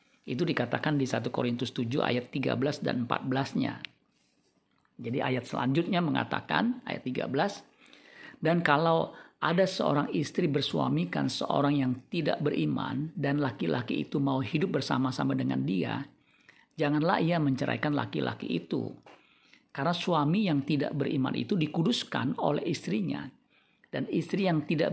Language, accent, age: Indonesian, native, 50-69